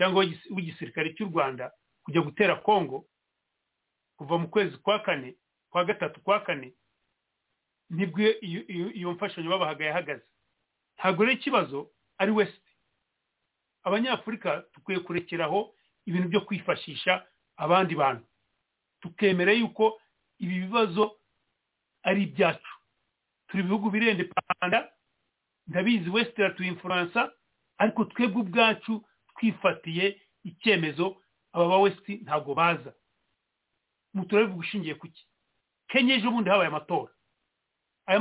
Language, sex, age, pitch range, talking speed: English, male, 40-59, 175-215 Hz, 100 wpm